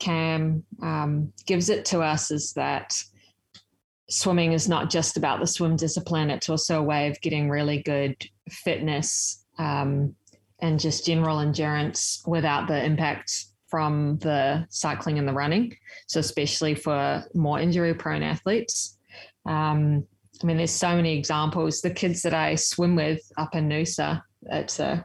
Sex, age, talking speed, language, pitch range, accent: female, 20-39, 155 wpm, English, 145-165 Hz, Australian